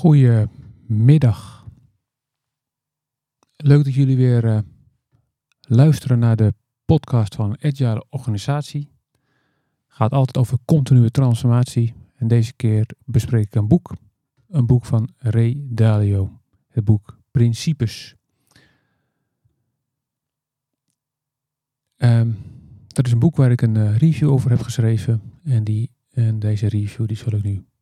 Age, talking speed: 40-59, 110 wpm